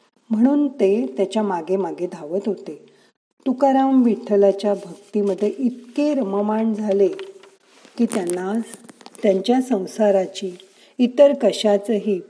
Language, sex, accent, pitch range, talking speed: Marathi, female, native, 195-245 Hz, 95 wpm